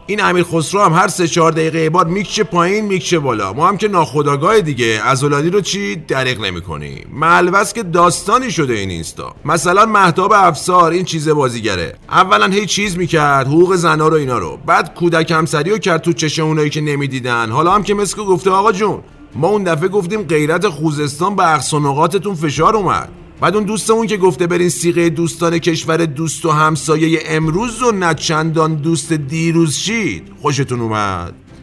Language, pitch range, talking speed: Persian, 155-190 Hz, 170 wpm